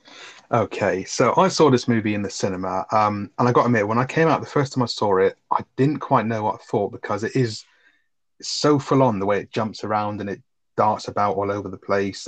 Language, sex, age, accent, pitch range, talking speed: English, male, 30-49, British, 100-120 Hz, 250 wpm